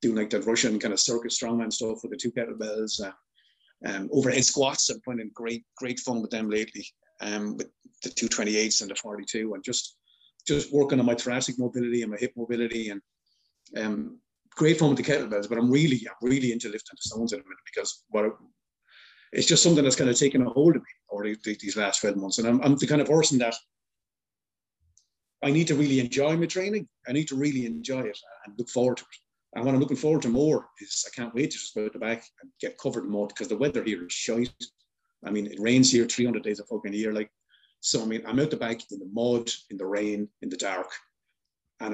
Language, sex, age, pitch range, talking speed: English, male, 30-49, 110-130 Hz, 240 wpm